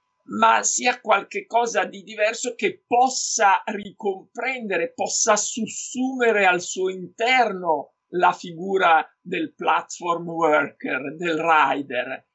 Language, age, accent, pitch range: Italian, 50-69, native, 175-240 Hz